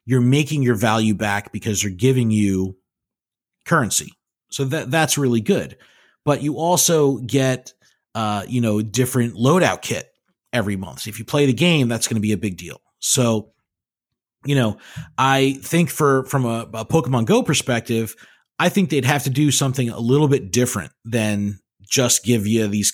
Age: 30-49